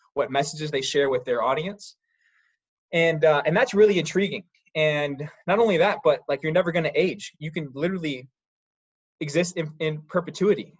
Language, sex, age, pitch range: English, male, 20-39, 135-200 Hz